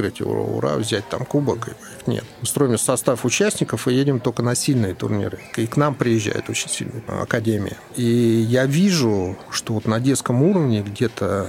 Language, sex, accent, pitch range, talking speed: Russian, male, native, 105-130 Hz, 165 wpm